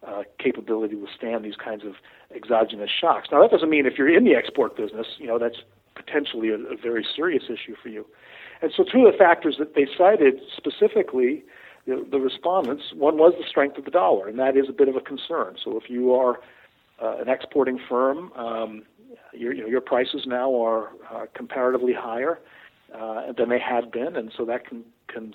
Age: 50-69